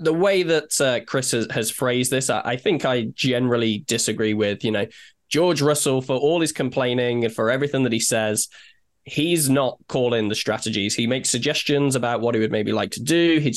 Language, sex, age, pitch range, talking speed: English, male, 10-29, 115-135 Hz, 210 wpm